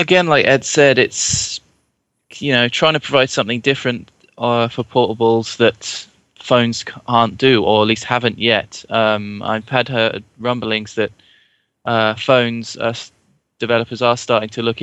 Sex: male